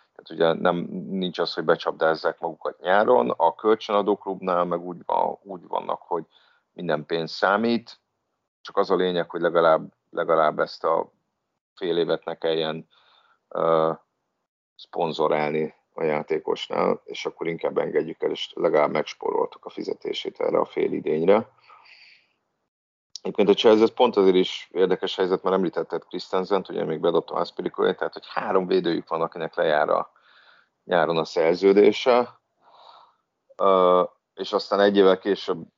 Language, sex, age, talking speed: Hungarian, male, 40-59, 135 wpm